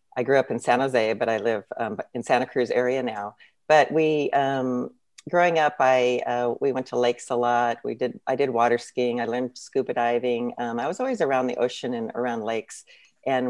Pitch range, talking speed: 120-140 Hz, 220 wpm